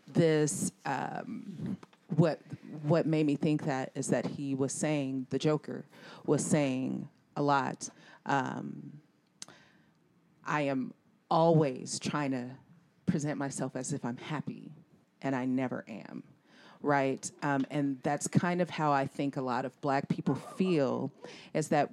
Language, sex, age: English, female, 30-49